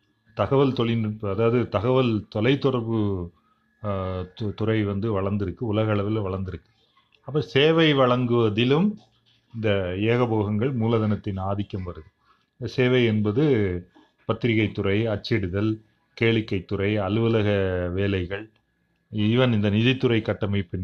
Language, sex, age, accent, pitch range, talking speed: Tamil, male, 30-49, native, 100-125 Hz, 90 wpm